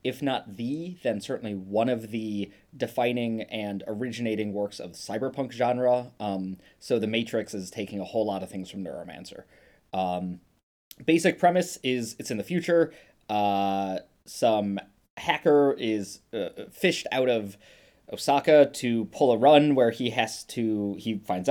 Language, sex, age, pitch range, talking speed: English, male, 20-39, 100-125 Hz, 155 wpm